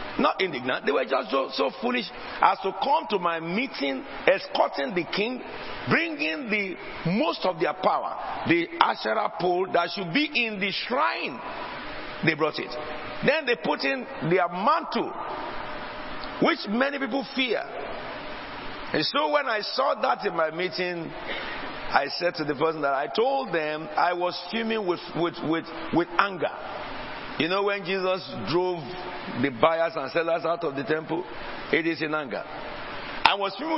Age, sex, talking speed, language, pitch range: 50-69, male, 160 wpm, English, 165-245 Hz